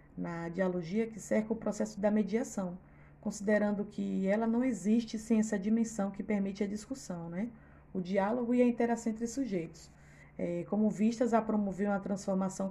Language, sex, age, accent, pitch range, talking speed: Portuguese, female, 20-39, Brazilian, 195-235 Hz, 160 wpm